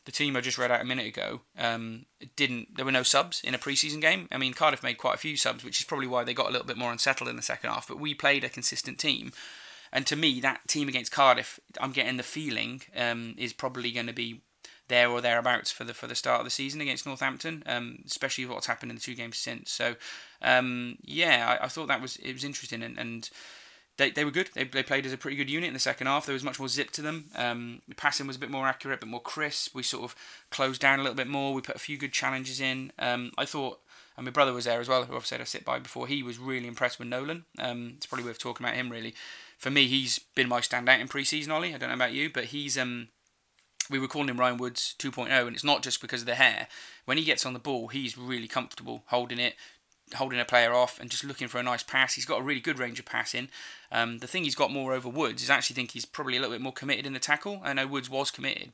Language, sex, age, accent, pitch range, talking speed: English, male, 20-39, British, 120-140 Hz, 275 wpm